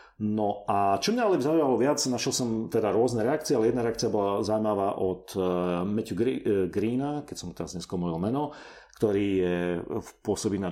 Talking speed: 160 wpm